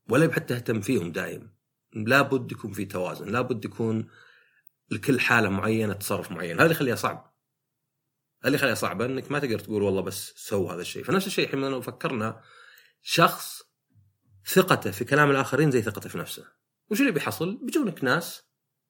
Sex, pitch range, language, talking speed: male, 105-140 Hz, Arabic, 165 wpm